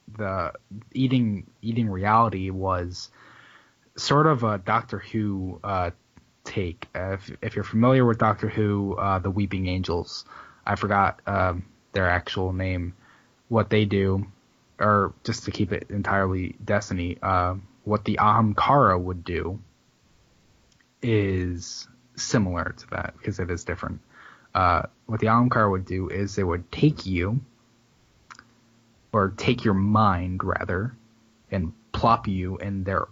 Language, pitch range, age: English, 95-110 Hz, 10-29